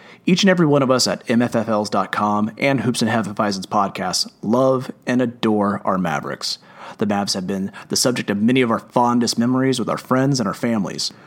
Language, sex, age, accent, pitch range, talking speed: English, male, 30-49, American, 115-145 Hz, 190 wpm